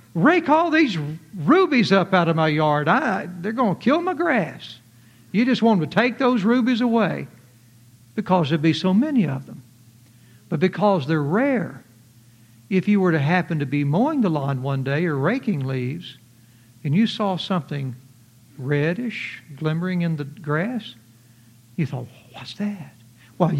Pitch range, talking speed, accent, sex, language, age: 130-195 Hz, 170 wpm, American, male, English, 60-79